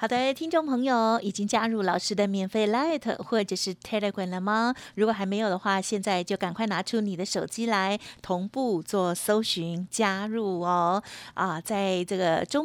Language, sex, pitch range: Chinese, female, 190-245 Hz